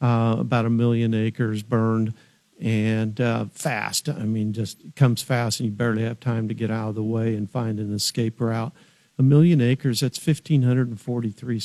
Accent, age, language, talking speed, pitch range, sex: American, 50-69, English, 180 wpm, 110-125 Hz, male